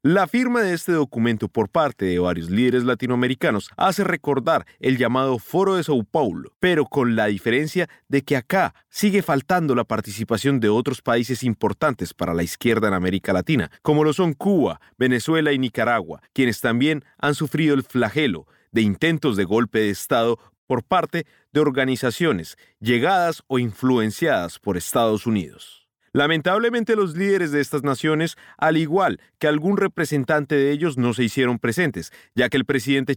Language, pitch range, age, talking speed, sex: Spanish, 115-170 Hz, 40-59, 165 wpm, male